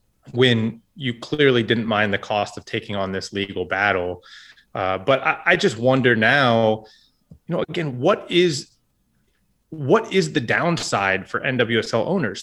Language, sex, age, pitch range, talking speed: English, male, 30-49, 115-180 Hz, 155 wpm